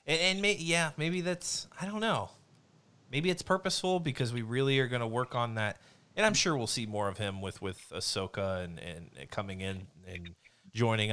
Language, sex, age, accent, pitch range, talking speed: English, male, 30-49, American, 100-130 Hz, 210 wpm